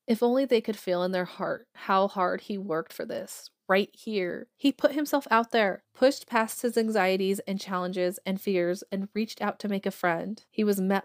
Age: 30-49